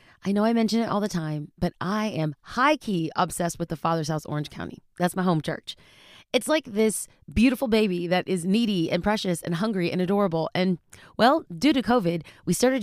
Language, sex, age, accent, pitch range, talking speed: English, female, 30-49, American, 170-230 Hz, 205 wpm